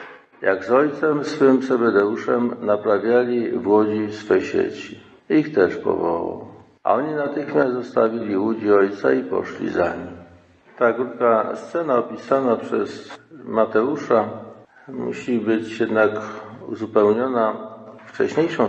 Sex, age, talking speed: male, 50-69, 110 wpm